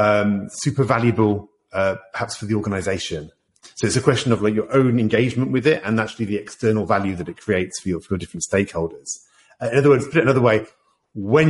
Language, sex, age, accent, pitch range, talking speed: English, male, 40-59, British, 105-135 Hz, 220 wpm